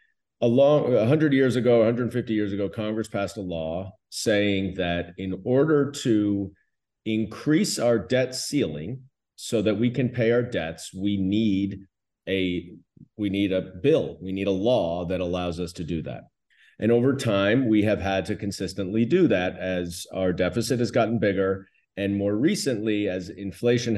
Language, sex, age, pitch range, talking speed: English, male, 30-49, 95-120 Hz, 165 wpm